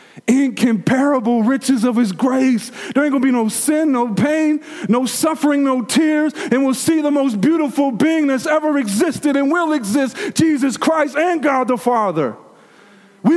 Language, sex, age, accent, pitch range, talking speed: English, male, 40-59, American, 200-260 Hz, 170 wpm